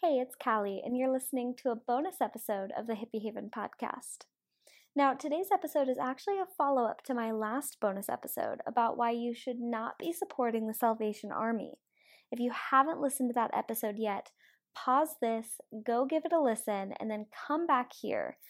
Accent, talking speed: American, 185 wpm